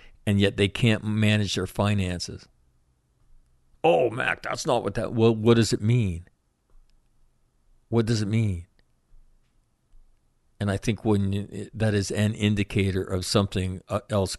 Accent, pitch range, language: American, 85-105 Hz, English